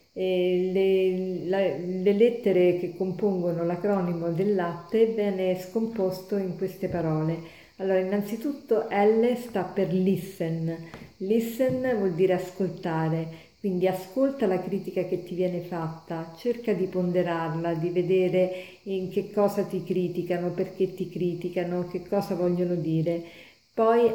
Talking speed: 125 wpm